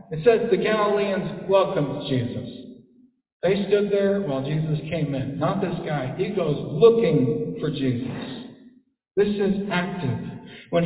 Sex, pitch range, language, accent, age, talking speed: male, 140-195 Hz, English, American, 60-79, 140 wpm